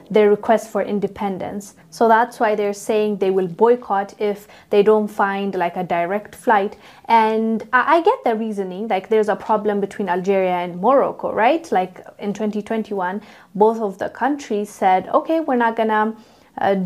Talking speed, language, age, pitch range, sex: 170 wpm, English, 20-39, 205-255 Hz, female